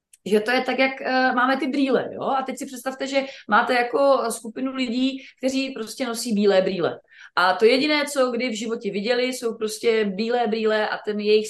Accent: native